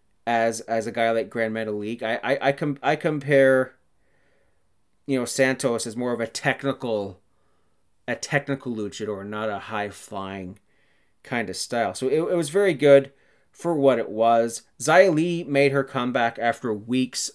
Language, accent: English, American